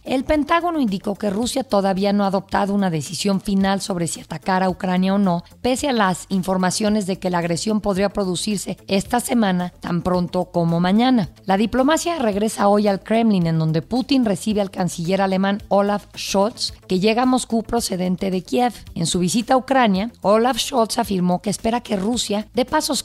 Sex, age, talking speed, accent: female, 40-59, 185 wpm, Mexican